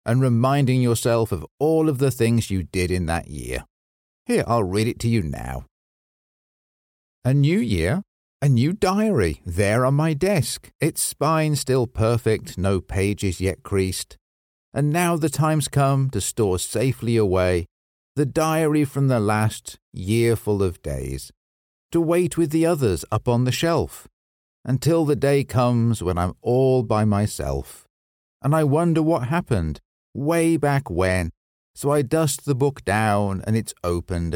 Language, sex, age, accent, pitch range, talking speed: English, male, 50-69, British, 90-145 Hz, 160 wpm